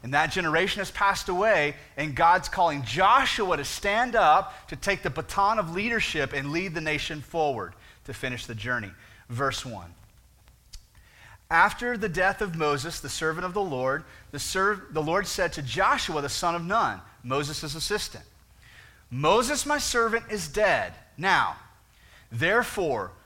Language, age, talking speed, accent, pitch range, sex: English, 30-49, 150 wpm, American, 120-180 Hz, male